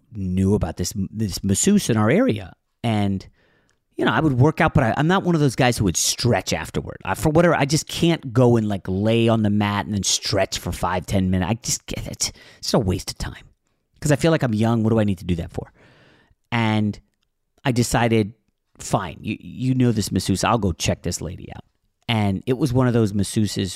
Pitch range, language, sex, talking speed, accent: 95-125 Hz, English, male, 230 wpm, American